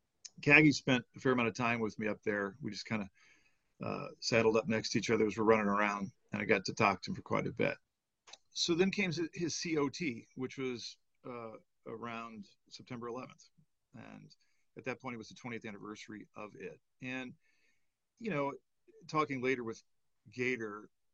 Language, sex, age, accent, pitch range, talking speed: English, male, 40-59, American, 110-130 Hz, 185 wpm